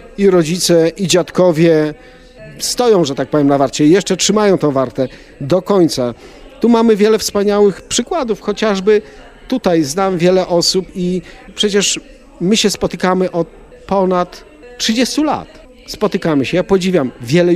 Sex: male